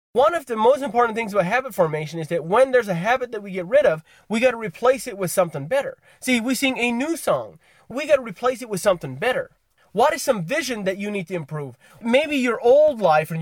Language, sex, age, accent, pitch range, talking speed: English, male, 30-49, American, 165-250 Hz, 250 wpm